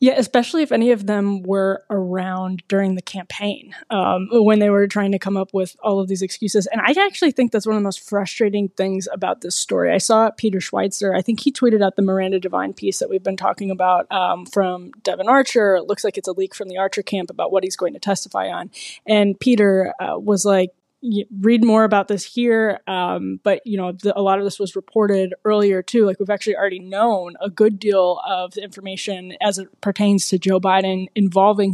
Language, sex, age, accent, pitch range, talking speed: English, female, 20-39, American, 190-220 Hz, 220 wpm